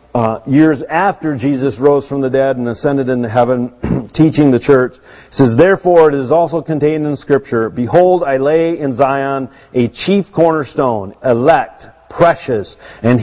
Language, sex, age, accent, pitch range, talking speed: English, male, 50-69, American, 120-160 Hz, 160 wpm